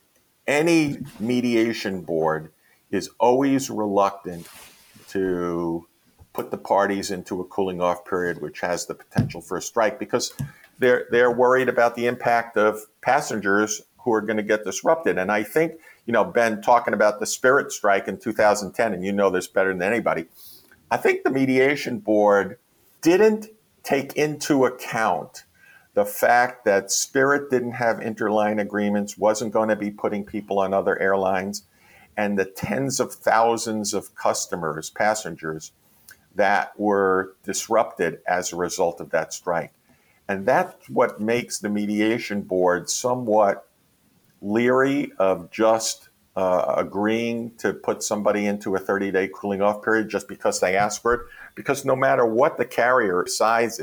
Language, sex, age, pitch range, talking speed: English, male, 50-69, 95-120 Hz, 150 wpm